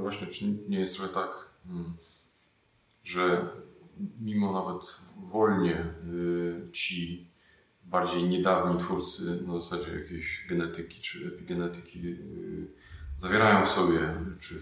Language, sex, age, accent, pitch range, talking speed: Polish, male, 30-49, native, 85-90 Hz, 100 wpm